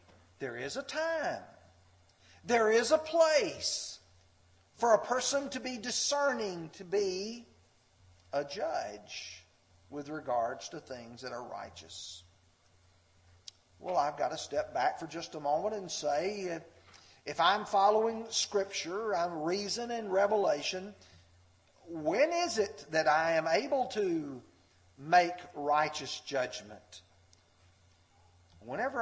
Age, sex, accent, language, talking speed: 50-69, male, American, English, 120 wpm